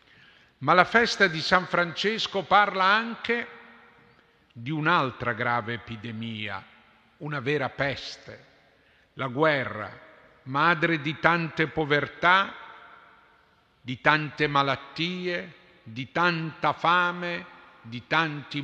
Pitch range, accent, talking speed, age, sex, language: 140-180 Hz, native, 95 wpm, 50-69, male, Italian